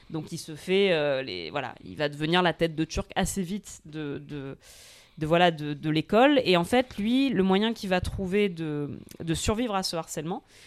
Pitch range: 165-210 Hz